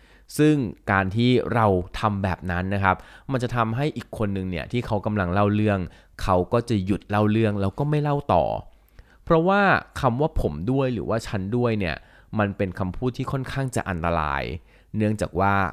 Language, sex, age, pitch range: Thai, male, 20-39, 90-120 Hz